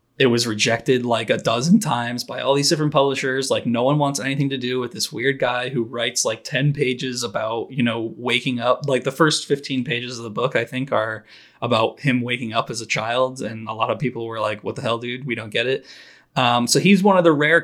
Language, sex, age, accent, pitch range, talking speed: English, male, 20-39, American, 120-140 Hz, 250 wpm